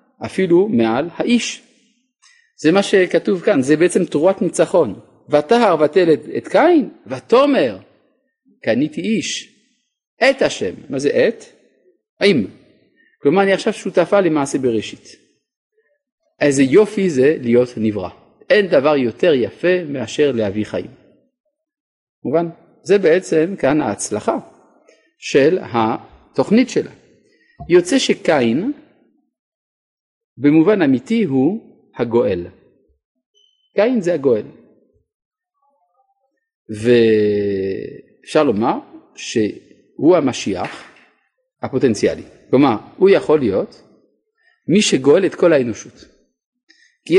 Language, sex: Hebrew, male